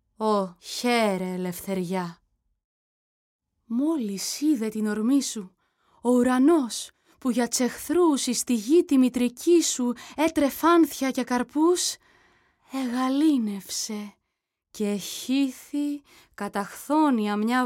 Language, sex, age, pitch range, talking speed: Greek, female, 20-39, 200-280 Hz, 90 wpm